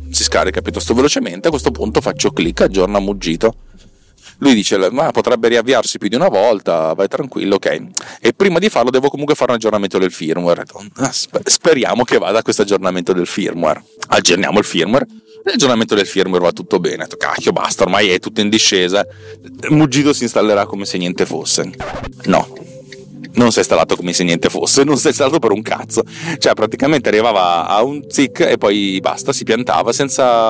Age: 30-49